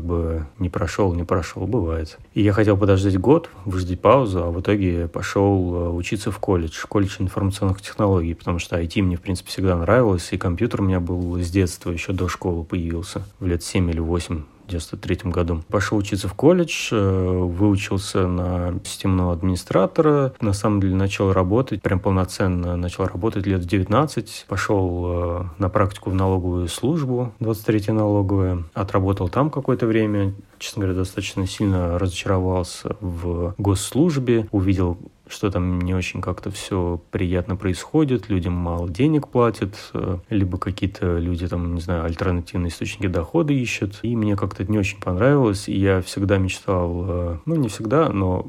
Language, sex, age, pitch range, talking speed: Russian, male, 30-49, 90-105 Hz, 155 wpm